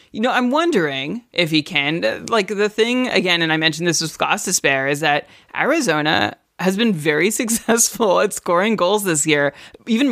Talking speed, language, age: 185 wpm, English, 30-49